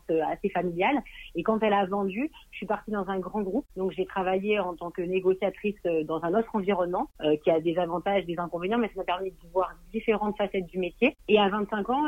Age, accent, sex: 40-59, French, female